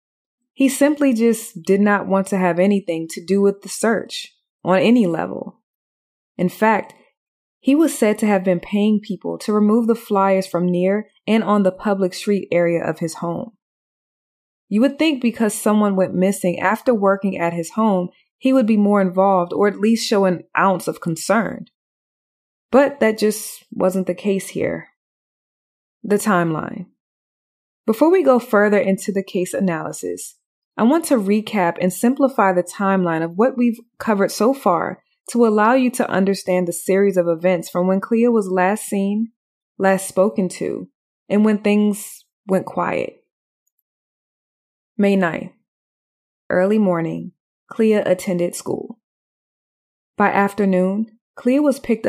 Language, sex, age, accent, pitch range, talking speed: English, female, 20-39, American, 185-225 Hz, 155 wpm